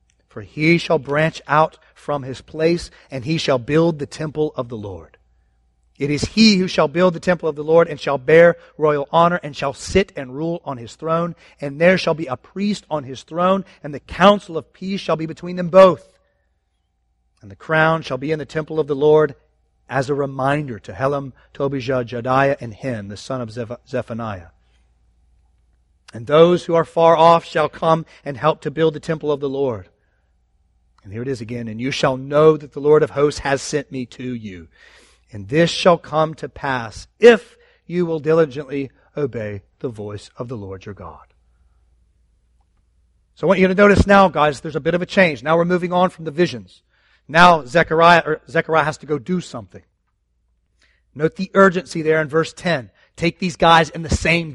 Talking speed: 200 wpm